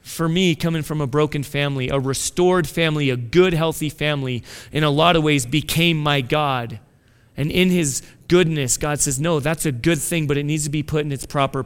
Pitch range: 130-170 Hz